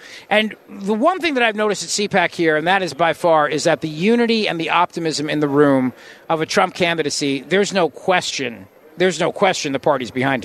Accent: American